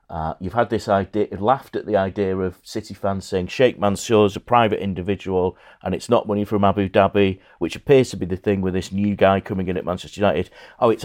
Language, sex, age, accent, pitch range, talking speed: English, male, 40-59, British, 90-115 Hz, 235 wpm